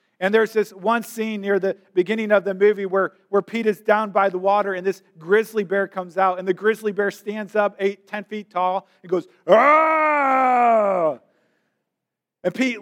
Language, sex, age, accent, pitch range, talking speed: English, male, 40-59, American, 165-205 Hz, 185 wpm